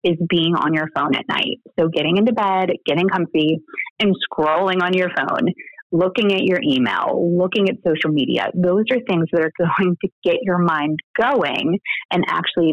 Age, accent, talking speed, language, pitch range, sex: 30-49, American, 185 wpm, English, 160-195 Hz, female